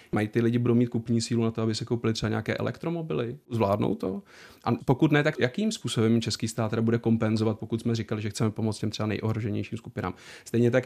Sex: male